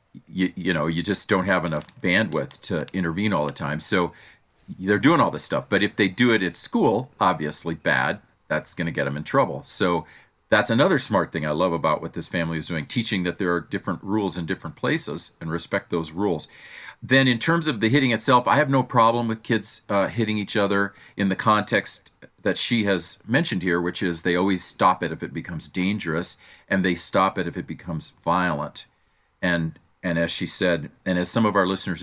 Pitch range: 85-100 Hz